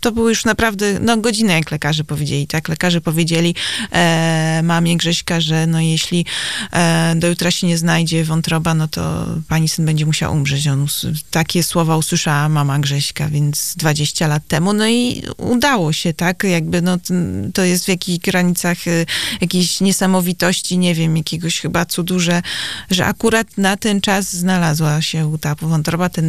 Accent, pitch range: native, 160-185 Hz